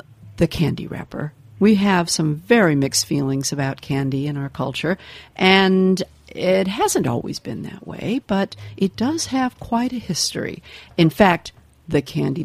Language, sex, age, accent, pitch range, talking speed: English, female, 50-69, American, 140-190 Hz, 155 wpm